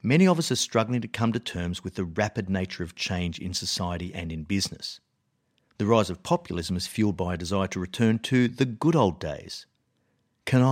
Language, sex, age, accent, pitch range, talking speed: English, male, 50-69, Australian, 95-125 Hz, 205 wpm